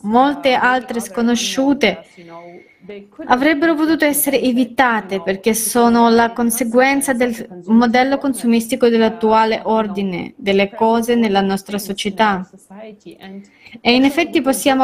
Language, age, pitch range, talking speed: Italian, 20-39, 220-260 Hz, 100 wpm